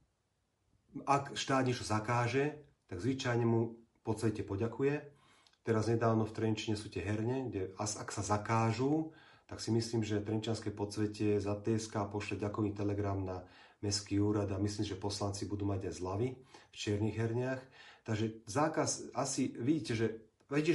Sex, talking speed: male, 155 wpm